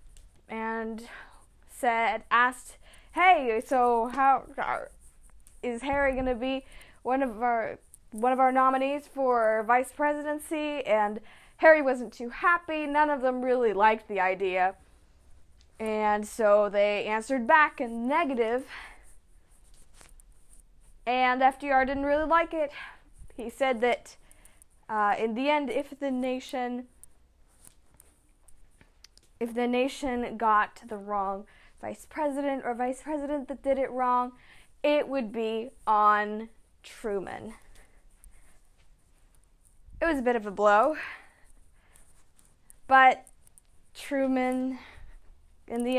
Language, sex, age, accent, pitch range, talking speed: English, female, 10-29, American, 215-270 Hz, 115 wpm